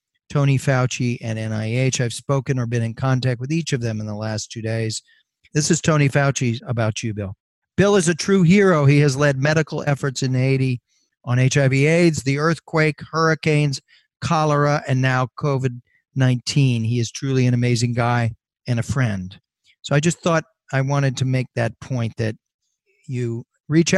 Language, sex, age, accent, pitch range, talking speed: English, male, 40-59, American, 125-155 Hz, 175 wpm